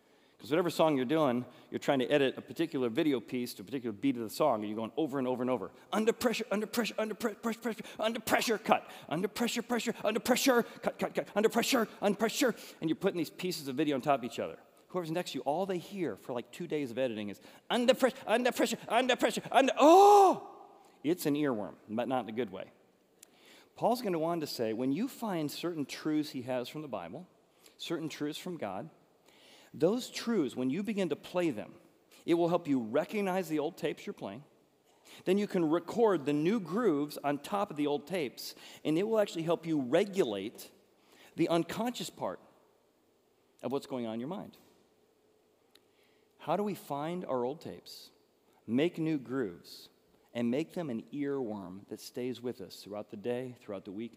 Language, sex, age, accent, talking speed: English, male, 40-59, American, 205 wpm